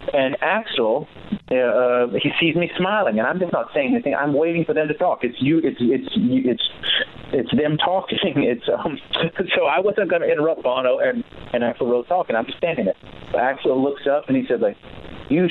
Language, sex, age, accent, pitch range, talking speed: English, male, 40-59, American, 115-165 Hz, 205 wpm